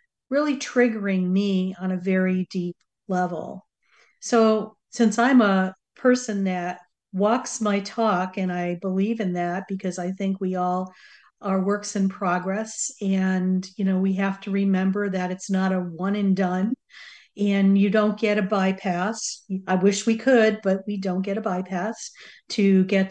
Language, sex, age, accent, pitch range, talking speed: English, female, 50-69, American, 185-220 Hz, 165 wpm